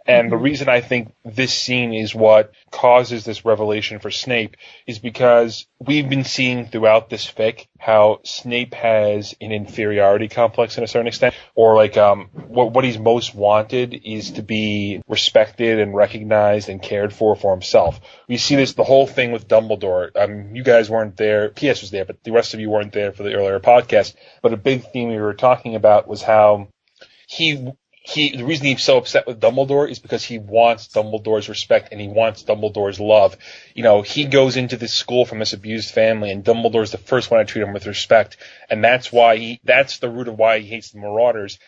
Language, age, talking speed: English, 20-39, 205 wpm